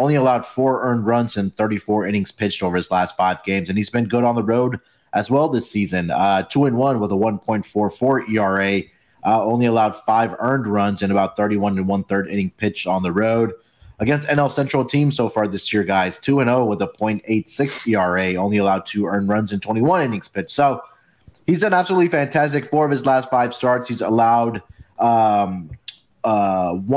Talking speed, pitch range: 200 wpm, 105-130 Hz